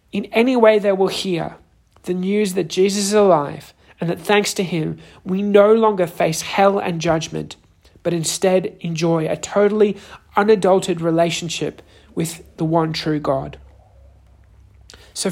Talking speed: 145 wpm